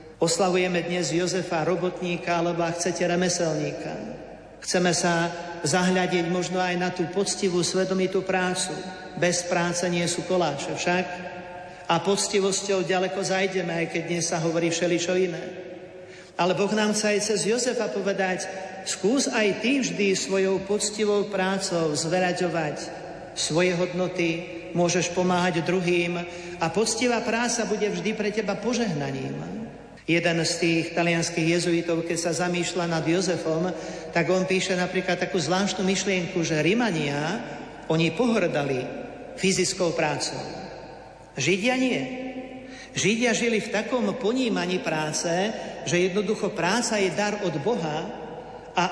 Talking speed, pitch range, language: 125 wpm, 170-200 Hz, Slovak